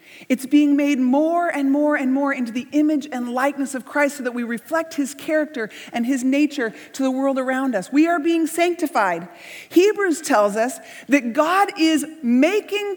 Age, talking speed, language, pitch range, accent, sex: 30-49, 185 wpm, English, 245-335 Hz, American, female